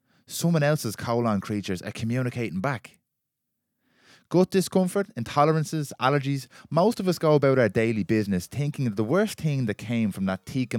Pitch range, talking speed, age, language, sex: 90-135 Hz, 160 wpm, 20-39, English, male